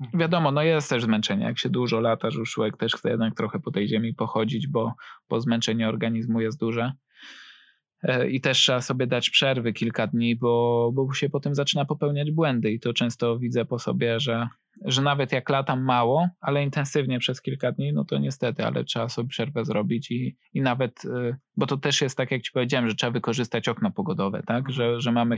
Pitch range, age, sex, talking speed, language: 115-145 Hz, 20-39, male, 205 wpm, Polish